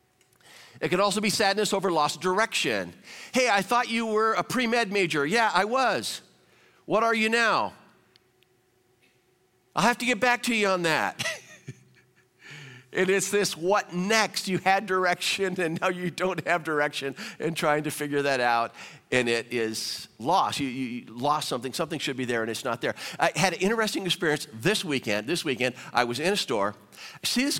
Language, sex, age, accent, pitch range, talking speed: English, male, 50-69, American, 135-195 Hz, 185 wpm